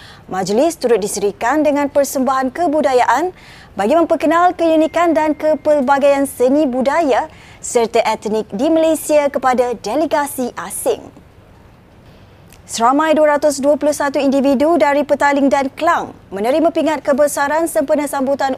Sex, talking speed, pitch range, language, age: female, 105 wpm, 255-300 Hz, Malay, 20-39